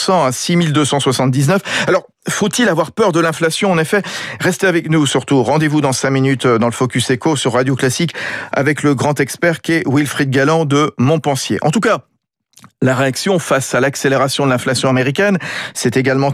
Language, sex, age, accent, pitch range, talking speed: French, male, 40-59, French, 130-170 Hz, 175 wpm